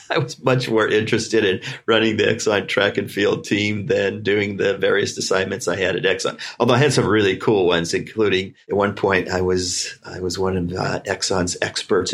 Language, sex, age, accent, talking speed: English, male, 50-69, American, 210 wpm